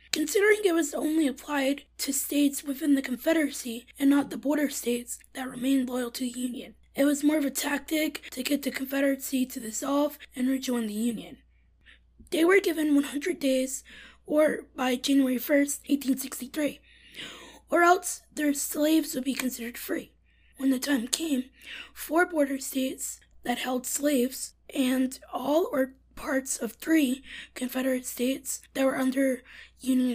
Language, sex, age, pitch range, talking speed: English, female, 20-39, 250-290 Hz, 155 wpm